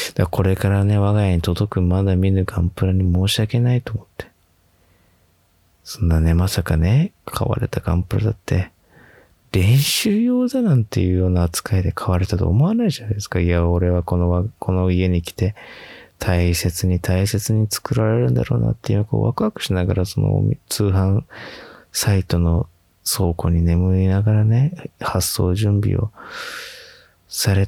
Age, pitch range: 20-39, 85-110 Hz